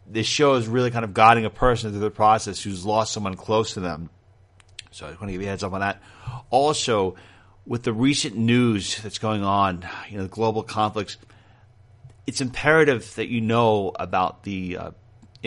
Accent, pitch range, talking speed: American, 100-115 Hz, 195 wpm